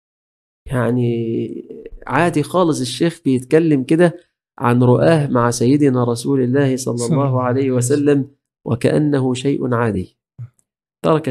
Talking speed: 105 wpm